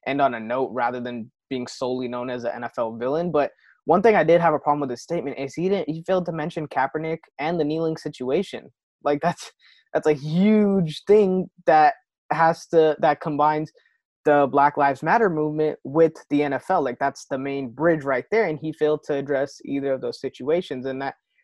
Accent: American